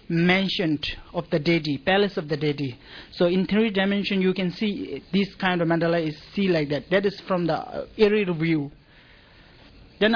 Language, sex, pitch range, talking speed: English, male, 165-195 Hz, 175 wpm